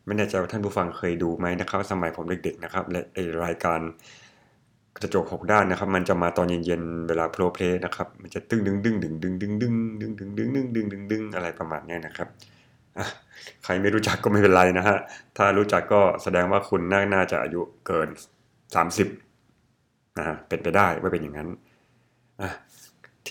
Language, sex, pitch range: Thai, male, 85-105 Hz